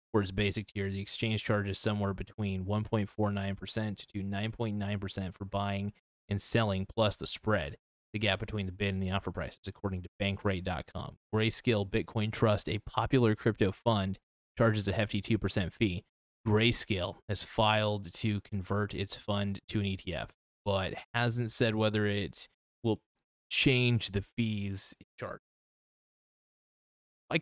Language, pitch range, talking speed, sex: English, 100-110 Hz, 140 wpm, male